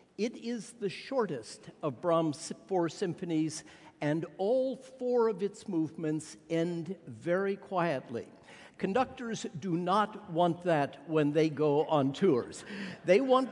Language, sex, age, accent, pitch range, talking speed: English, male, 60-79, American, 160-215 Hz, 130 wpm